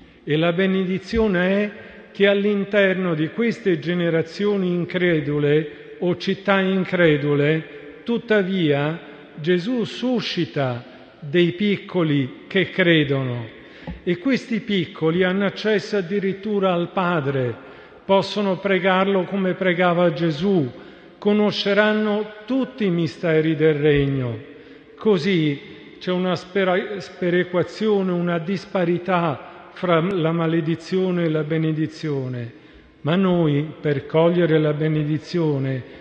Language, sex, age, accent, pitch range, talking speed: Italian, male, 50-69, native, 155-190 Hz, 95 wpm